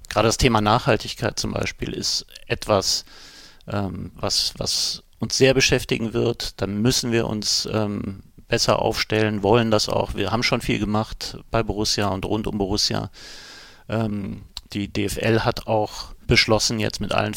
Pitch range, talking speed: 100-115 Hz, 155 wpm